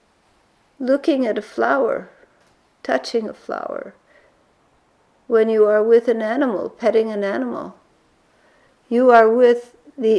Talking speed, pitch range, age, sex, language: 120 wpm, 210-255 Hz, 60-79, female, English